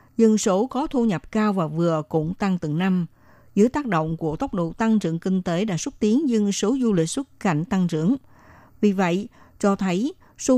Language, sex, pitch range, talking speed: Vietnamese, female, 170-215 Hz, 215 wpm